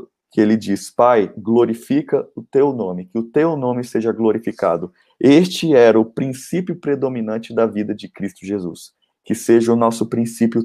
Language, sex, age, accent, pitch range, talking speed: Portuguese, male, 20-39, Brazilian, 105-120 Hz, 165 wpm